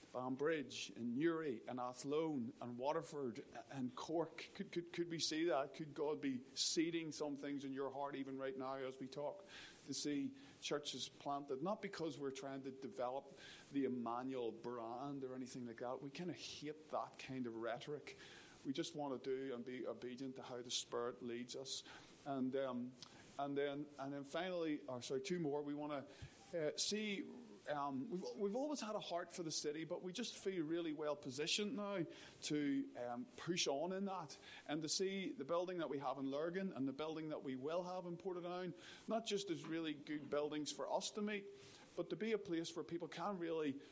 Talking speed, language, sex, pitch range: 200 wpm, English, male, 135-170 Hz